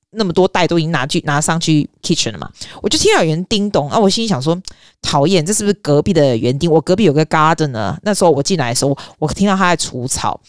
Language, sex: Chinese, female